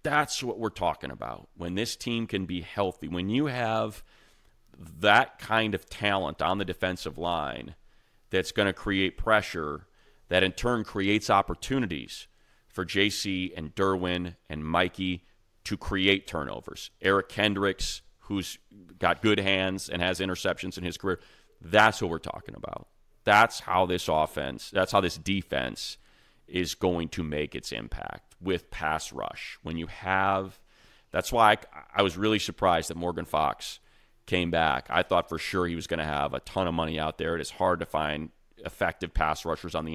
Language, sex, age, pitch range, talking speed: English, male, 40-59, 85-100 Hz, 170 wpm